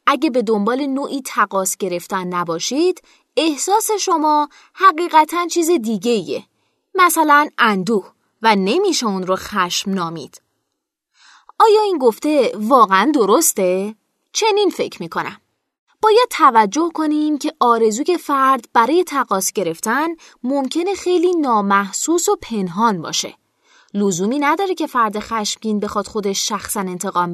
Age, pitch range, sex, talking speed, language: 20-39, 210-335 Hz, female, 115 wpm, Persian